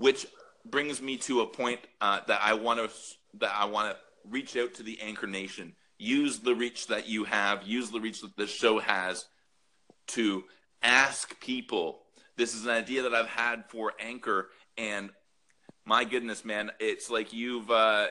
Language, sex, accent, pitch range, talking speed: English, male, American, 105-125 Hz, 180 wpm